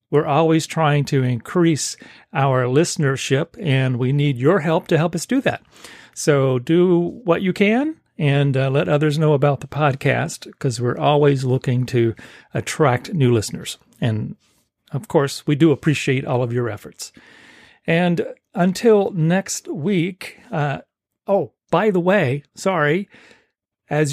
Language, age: English, 40-59